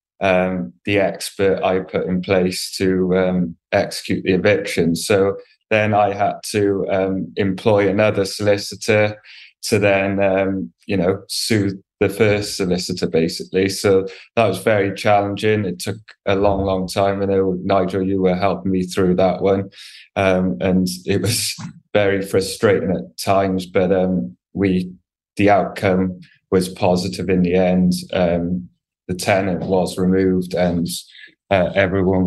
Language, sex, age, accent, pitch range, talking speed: English, male, 20-39, British, 90-100 Hz, 145 wpm